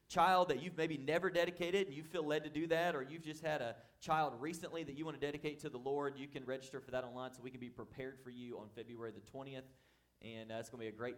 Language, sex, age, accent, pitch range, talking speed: English, male, 30-49, American, 110-135 Hz, 285 wpm